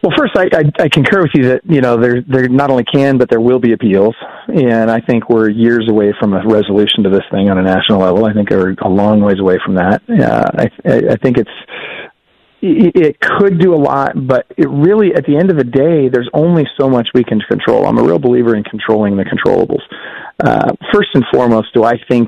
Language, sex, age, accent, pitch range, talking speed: English, male, 40-59, American, 110-130 Hz, 235 wpm